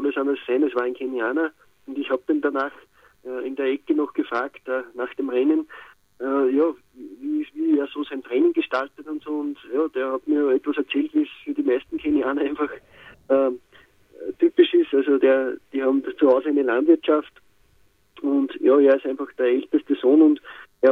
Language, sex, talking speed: German, male, 190 wpm